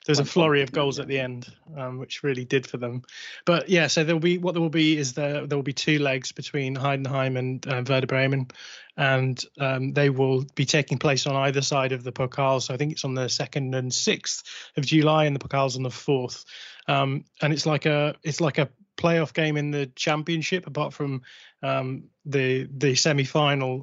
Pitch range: 130-150 Hz